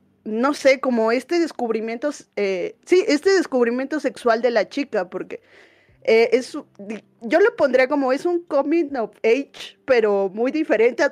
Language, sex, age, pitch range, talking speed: Spanish, female, 20-39, 210-260 Hz, 155 wpm